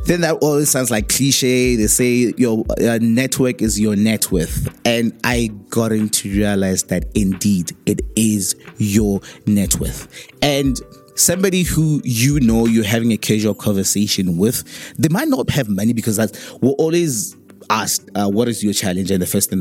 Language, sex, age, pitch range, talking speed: English, male, 20-39, 100-125 Hz, 175 wpm